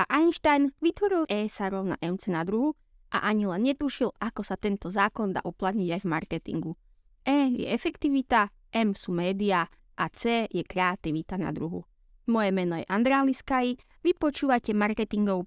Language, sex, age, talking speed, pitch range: Slovak, female, 20-39, 150 wpm, 190-255 Hz